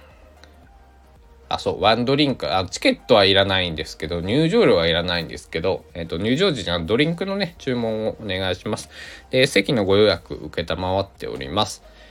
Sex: male